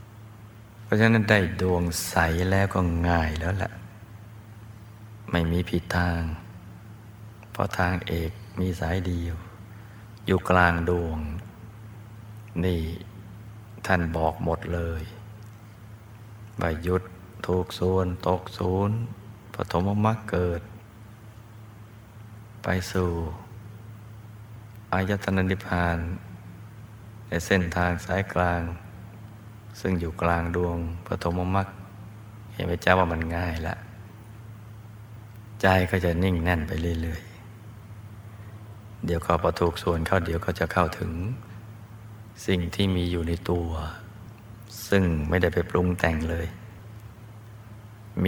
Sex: male